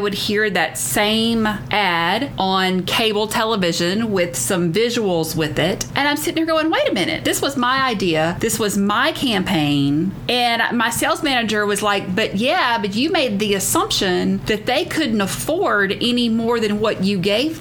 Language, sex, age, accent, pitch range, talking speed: English, female, 30-49, American, 190-240 Hz, 175 wpm